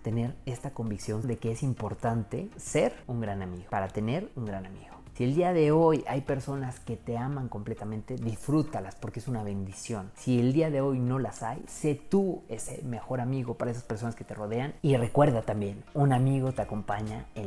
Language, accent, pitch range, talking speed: Spanish, Mexican, 115-155 Hz, 205 wpm